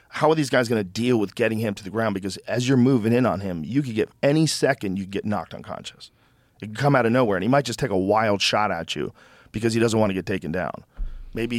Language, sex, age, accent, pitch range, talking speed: English, male, 40-59, American, 110-130 Hz, 280 wpm